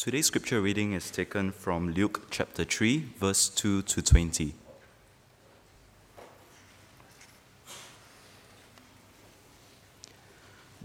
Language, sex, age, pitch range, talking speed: English, male, 20-39, 90-110 Hz, 70 wpm